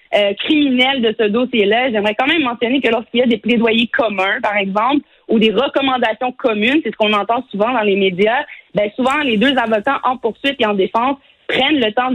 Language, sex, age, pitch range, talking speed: French, female, 30-49, 220-275 Hz, 215 wpm